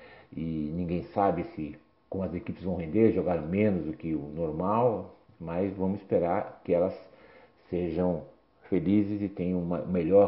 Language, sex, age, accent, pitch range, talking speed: Portuguese, male, 60-79, Brazilian, 85-100 Hz, 150 wpm